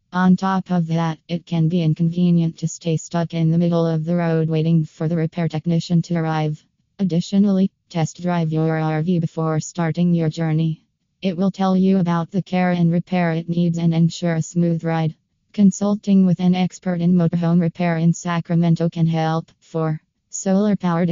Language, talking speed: English, 175 wpm